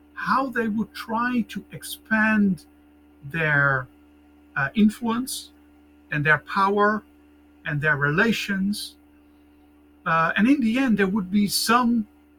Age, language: 50-69, English